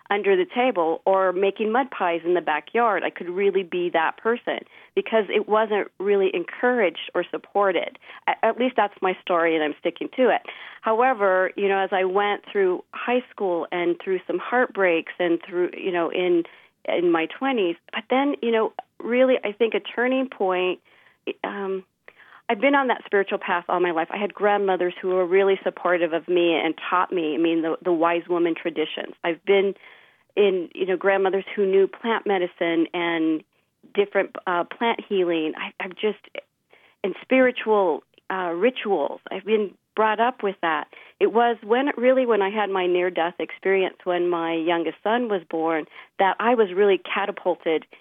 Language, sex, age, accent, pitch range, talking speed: English, female, 40-59, American, 175-230 Hz, 180 wpm